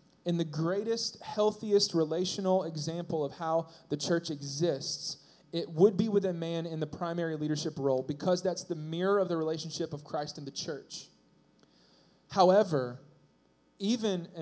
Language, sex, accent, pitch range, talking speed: English, male, American, 155-190 Hz, 150 wpm